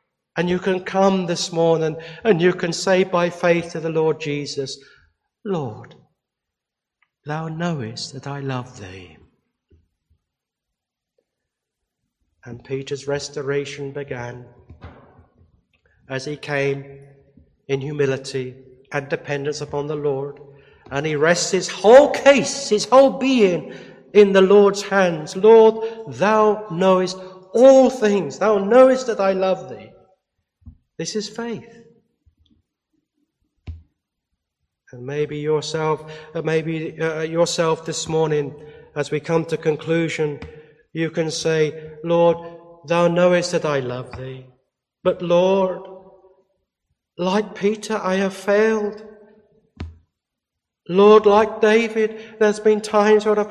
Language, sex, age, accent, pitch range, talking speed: English, male, 60-79, British, 145-215 Hz, 115 wpm